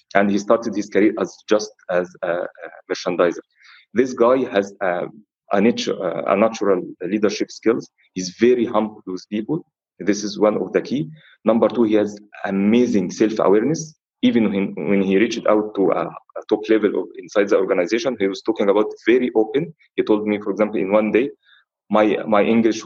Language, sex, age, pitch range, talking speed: English, male, 30-49, 105-125 Hz, 185 wpm